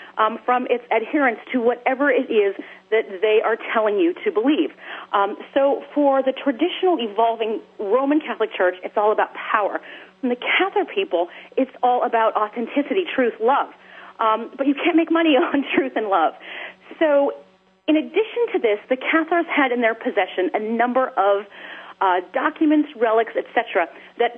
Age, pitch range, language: 40-59, 220-310 Hz, English